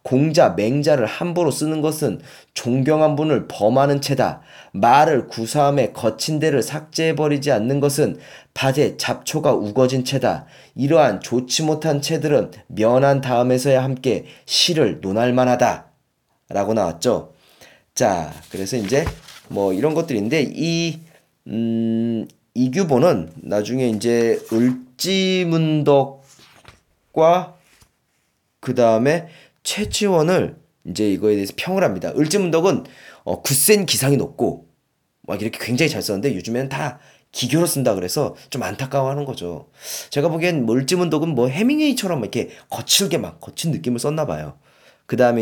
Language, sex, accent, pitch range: Korean, male, native, 120-160 Hz